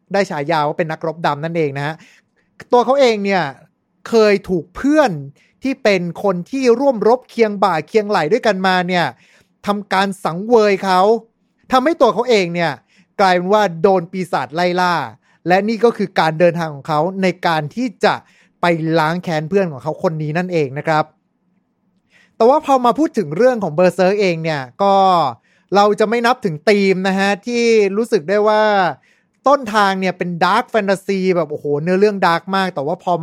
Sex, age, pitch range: male, 30-49, 170-210 Hz